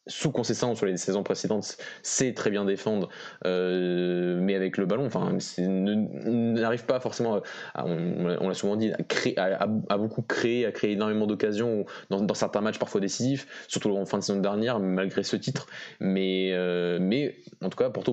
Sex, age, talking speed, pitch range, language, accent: male, 20-39, 195 wpm, 95-115 Hz, French, French